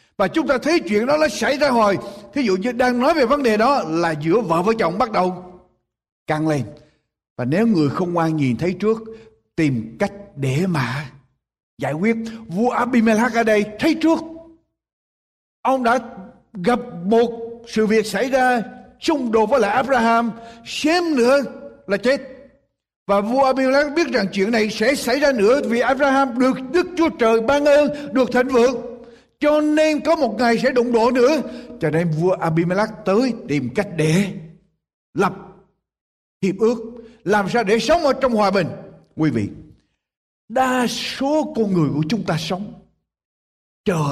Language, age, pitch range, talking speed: Vietnamese, 60-79, 180-255 Hz, 170 wpm